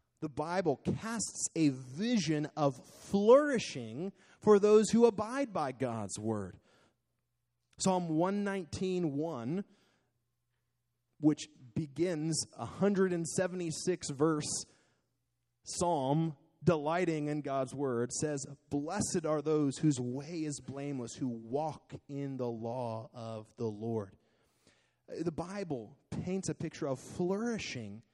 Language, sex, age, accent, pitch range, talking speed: English, male, 30-49, American, 120-160 Hz, 100 wpm